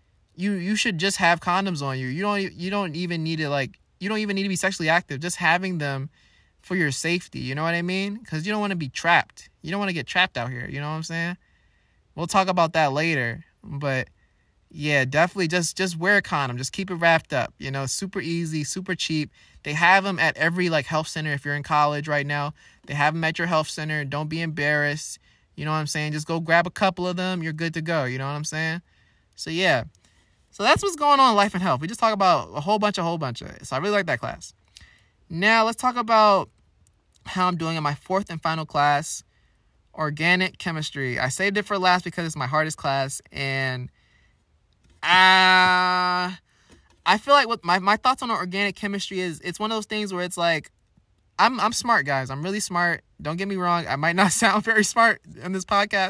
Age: 20-39